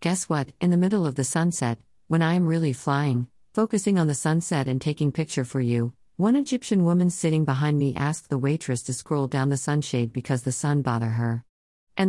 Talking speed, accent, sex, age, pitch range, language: 210 wpm, American, female, 50-69, 130-165 Hz, English